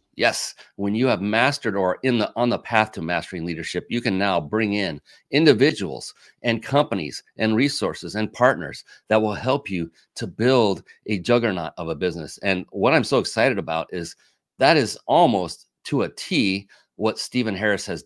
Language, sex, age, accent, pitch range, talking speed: English, male, 40-59, American, 95-115 Hz, 180 wpm